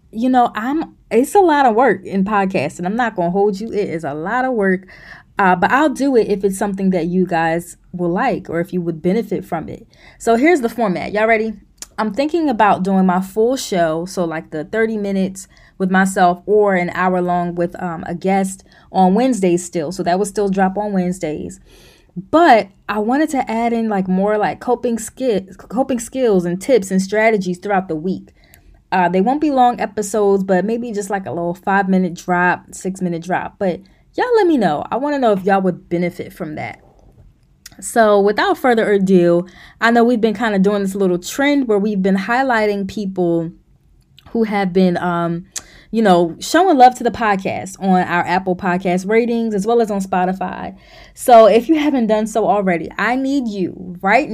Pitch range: 180-225 Hz